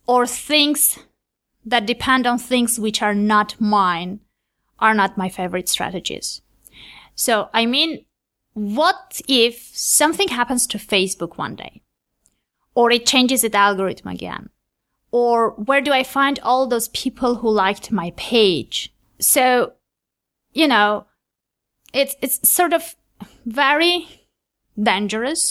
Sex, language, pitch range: female, English, 195-255 Hz